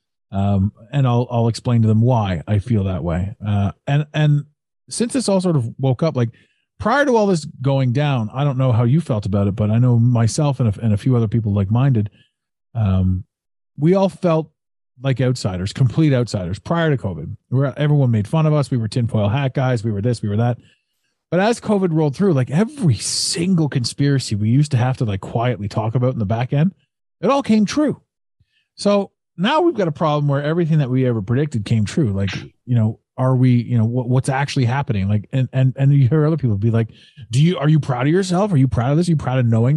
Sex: male